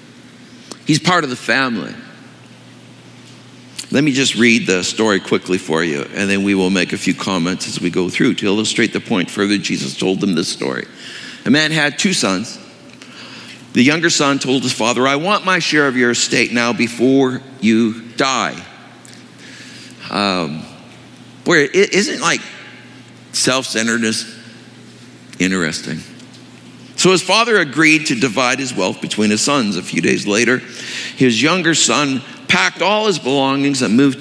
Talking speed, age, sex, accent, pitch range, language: 155 wpm, 60-79, male, American, 115-145 Hz, English